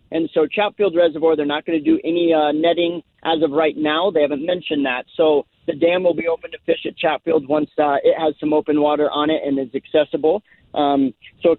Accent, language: American, English